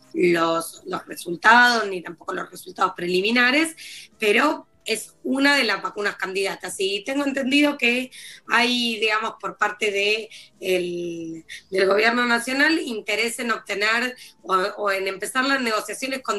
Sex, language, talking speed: female, Spanish, 140 wpm